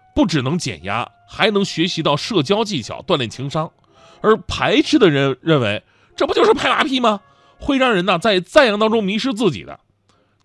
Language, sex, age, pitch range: Chinese, male, 30-49, 140-210 Hz